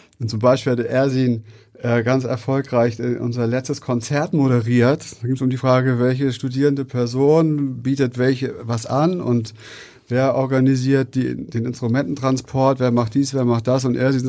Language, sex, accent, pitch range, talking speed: German, male, German, 125-145 Hz, 165 wpm